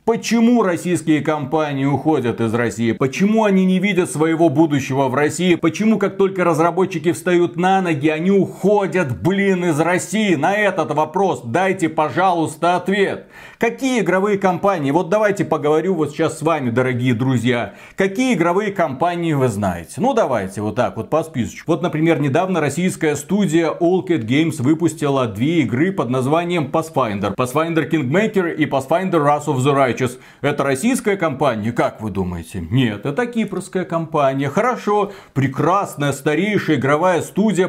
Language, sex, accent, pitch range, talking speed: Russian, male, native, 140-185 Hz, 150 wpm